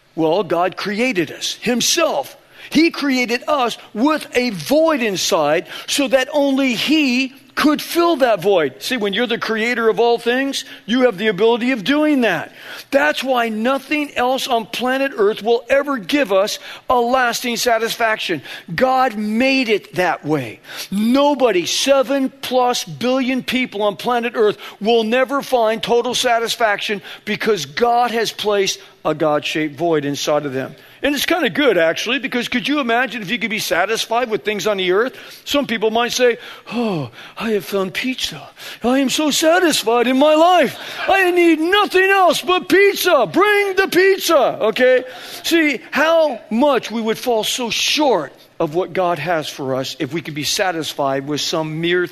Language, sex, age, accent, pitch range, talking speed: English, male, 50-69, American, 205-275 Hz, 165 wpm